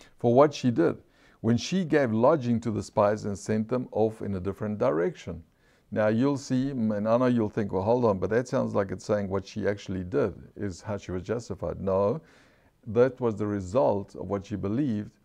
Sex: male